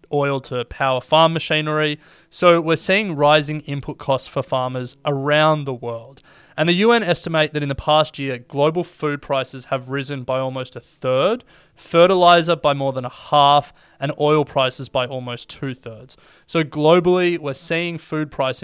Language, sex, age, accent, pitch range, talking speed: English, male, 20-39, Australian, 130-160 Hz, 165 wpm